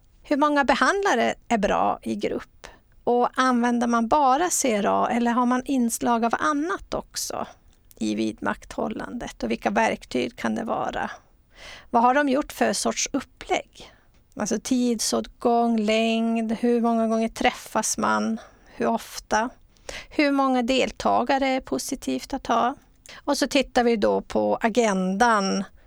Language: Swedish